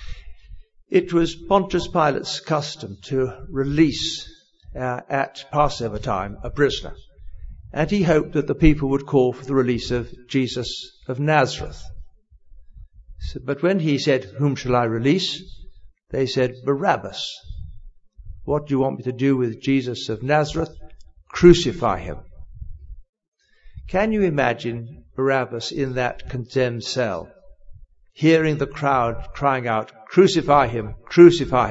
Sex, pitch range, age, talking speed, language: male, 110-150 Hz, 60-79, 130 wpm, English